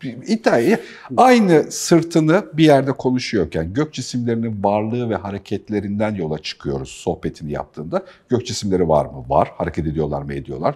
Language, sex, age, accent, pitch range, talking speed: Turkish, male, 50-69, native, 105-155 Hz, 135 wpm